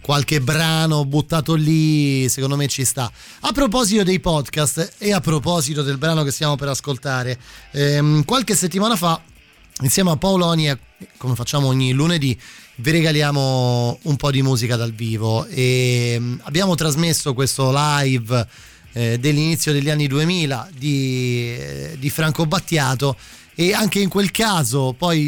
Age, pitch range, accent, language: 20-39, 130-175 Hz, native, Italian